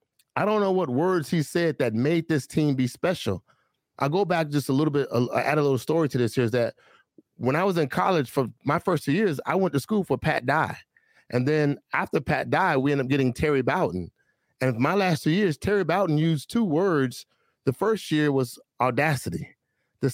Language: English